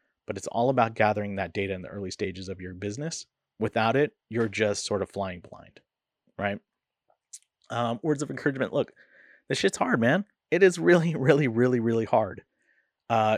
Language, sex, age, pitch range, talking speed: English, male, 30-49, 100-115 Hz, 180 wpm